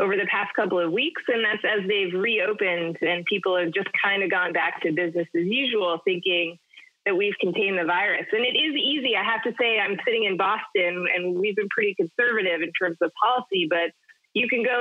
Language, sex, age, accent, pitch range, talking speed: English, female, 30-49, American, 180-265 Hz, 220 wpm